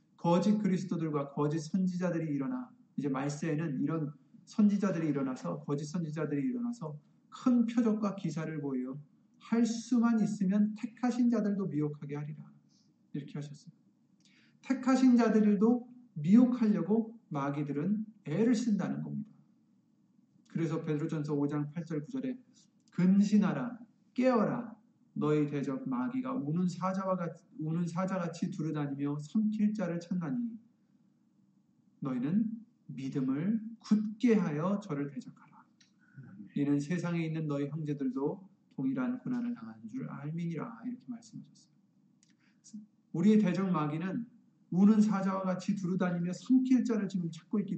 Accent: native